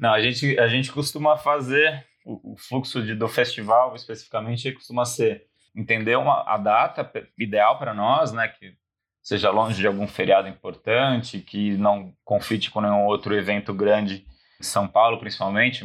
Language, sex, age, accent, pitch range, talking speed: Portuguese, male, 20-39, Brazilian, 100-125 Hz, 165 wpm